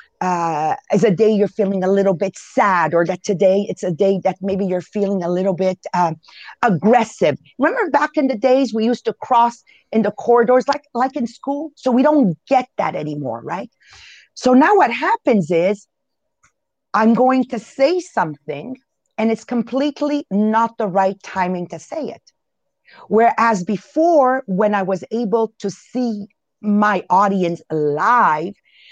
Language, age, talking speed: English, 40-59, 165 wpm